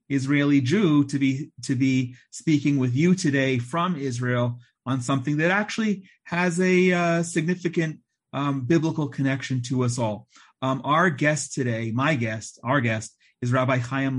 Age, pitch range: 30-49, 125-145 Hz